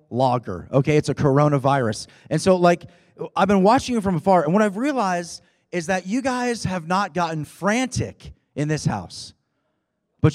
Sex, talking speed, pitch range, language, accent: male, 175 wpm, 140-210 Hz, English, American